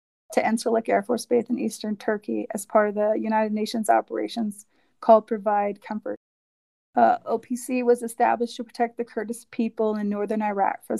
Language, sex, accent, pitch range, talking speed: English, female, American, 210-230 Hz, 170 wpm